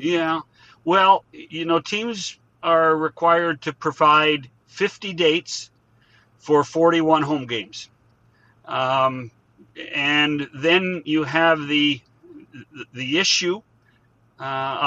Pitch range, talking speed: 130-170 Hz, 95 wpm